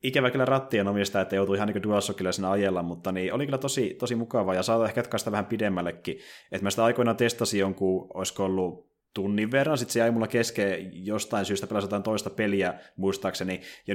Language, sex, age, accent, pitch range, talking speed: Finnish, male, 20-39, native, 95-110 Hz, 205 wpm